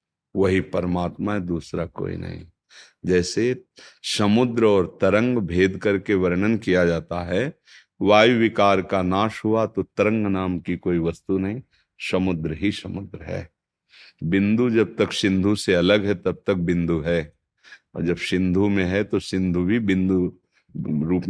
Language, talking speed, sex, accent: Hindi, 150 wpm, male, native